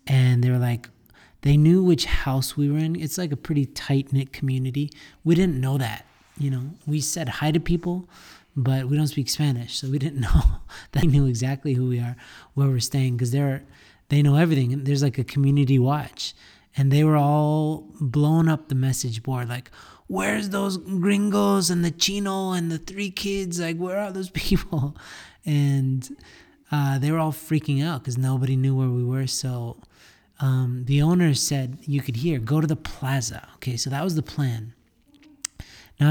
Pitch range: 130-155 Hz